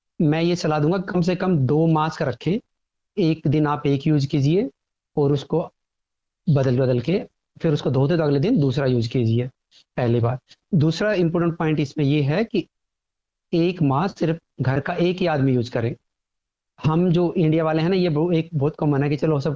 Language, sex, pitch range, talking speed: Hindi, male, 140-165 Hz, 200 wpm